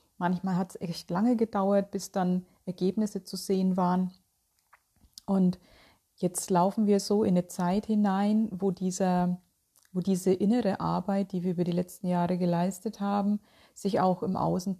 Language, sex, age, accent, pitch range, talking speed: German, female, 30-49, German, 180-205 Hz, 160 wpm